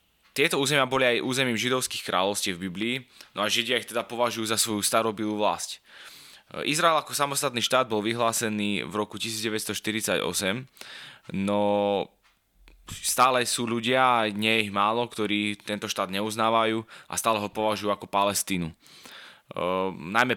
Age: 20-39